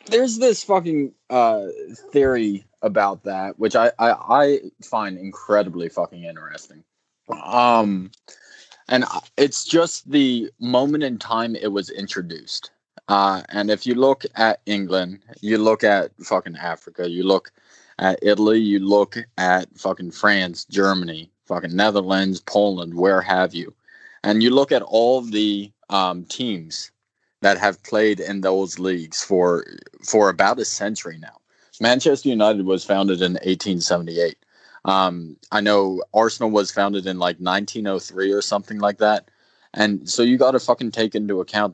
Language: English